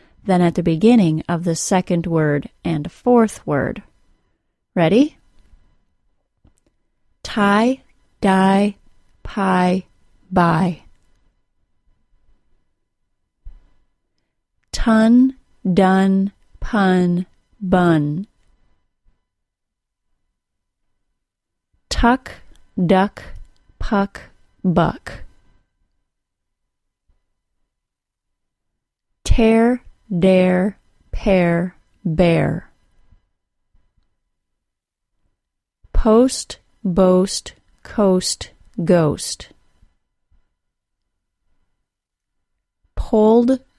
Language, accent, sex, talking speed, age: English, American, female, 45 wpm, 30-49